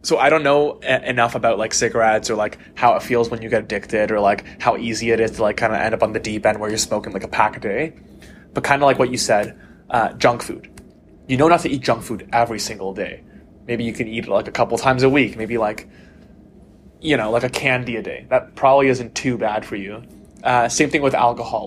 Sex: male